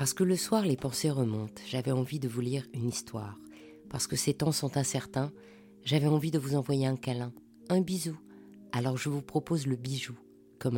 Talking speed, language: 200 wpm, French